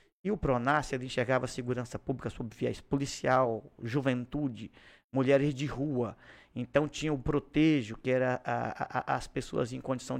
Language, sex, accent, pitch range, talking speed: Portuguese, male, Brazilian, 130-215 Hz, 160 wpm